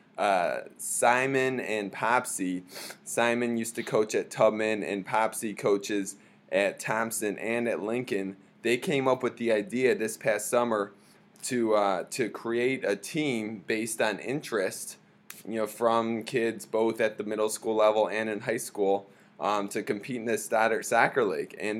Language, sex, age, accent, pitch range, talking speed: English, male, 20-39, American, 110-130 Hz, 160 wpm